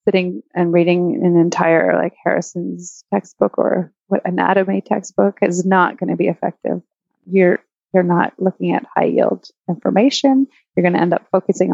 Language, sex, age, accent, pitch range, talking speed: English, female, 30-49, American, 175-200 Hz, 160 wpm